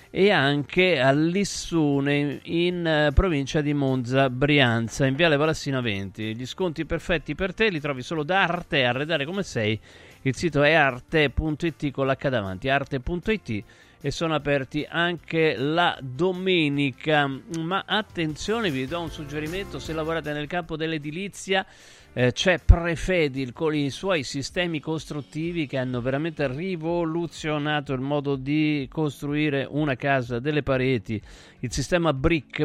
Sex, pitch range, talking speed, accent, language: male, 130-165 Hz, 135 wpm, native, Italian